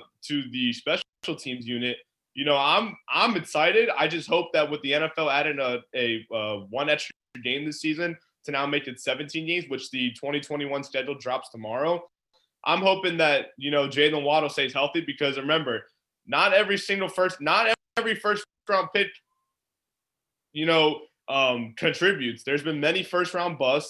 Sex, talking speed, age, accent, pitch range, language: male, 170 wpm, 20-39, American, 140-165 Hz, English